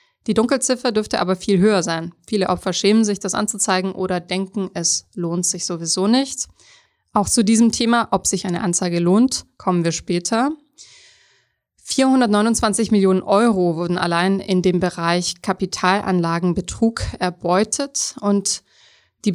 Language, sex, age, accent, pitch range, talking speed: German, female, 20-39, German, 180-220 Hz, 135 wpm